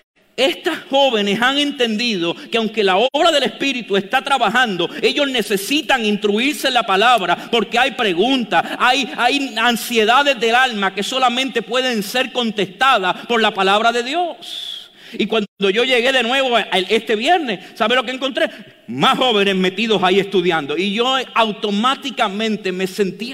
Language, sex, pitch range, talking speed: English, male, 195-255 Hz, 150 wpm